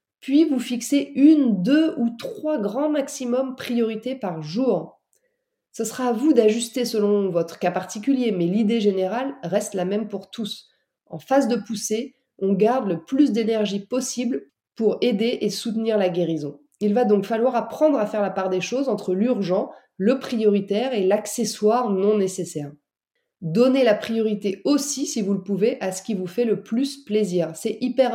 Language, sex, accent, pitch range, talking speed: French, female, French, 195-250 Hz, 175 wpm